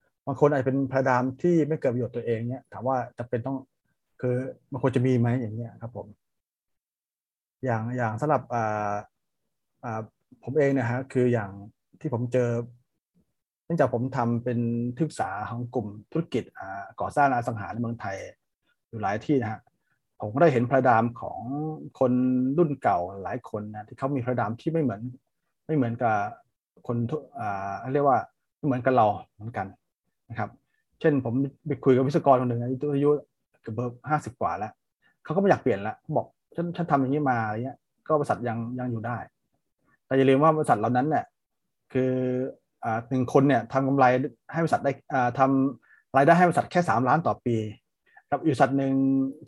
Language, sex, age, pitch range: Thai, male, 30-49, 120-140 Hz